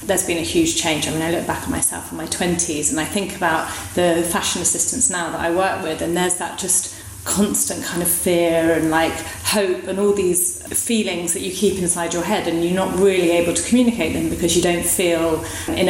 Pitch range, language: 165-190 Hz, English